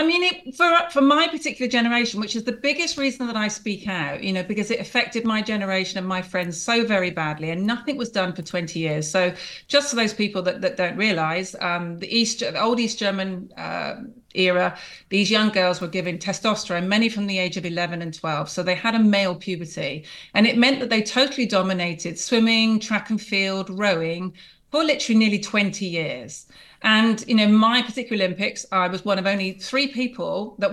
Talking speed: 210 wpm